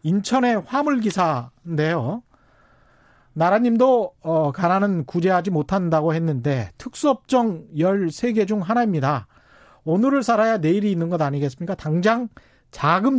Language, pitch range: Korean, 150-220 Hz